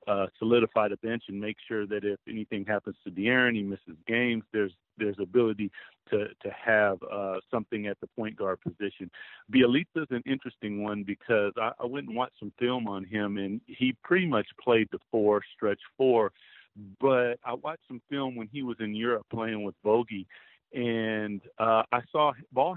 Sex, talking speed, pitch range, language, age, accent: male, 185 wpm, 105-120 Hz, English, 50-69, American